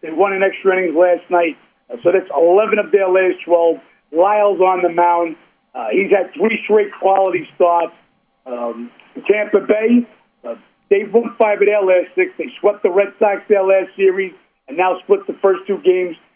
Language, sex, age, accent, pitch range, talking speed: English, male, 50-69, American, 180-215 Hz, 190 wpm